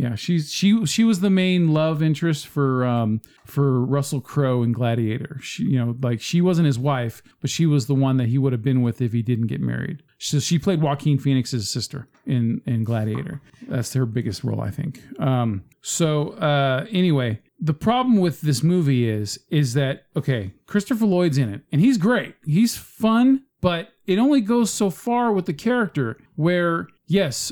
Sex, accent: male, American